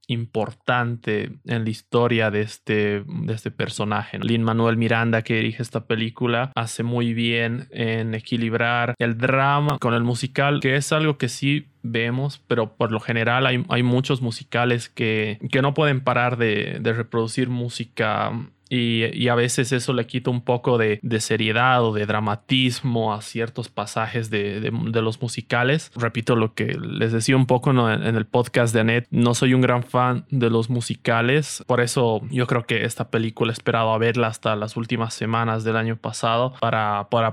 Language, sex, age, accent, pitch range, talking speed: Spanish, male, 20-39, Mexican, 115-125 Hz, 180 wpm